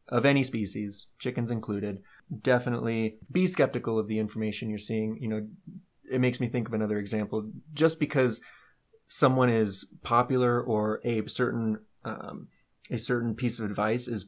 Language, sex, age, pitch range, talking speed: English, male, 20-39, 110-130 Hz, 155 wpm